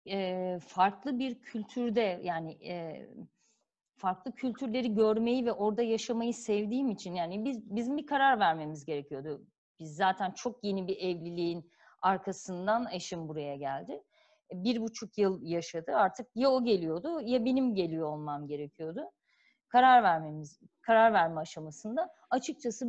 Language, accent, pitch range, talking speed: Turkish, native, 180-245 Hz, 135 wpm